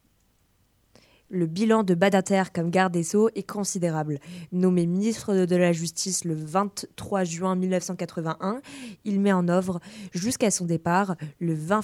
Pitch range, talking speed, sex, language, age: 170-205 Hz, 140 wpm, female, French, 20-39